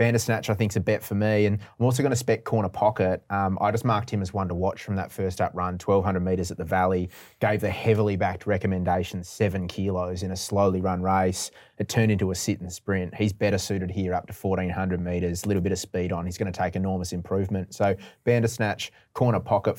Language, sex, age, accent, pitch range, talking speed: English, male, 30-49, Australian, 95-110 Hz, 235 wpm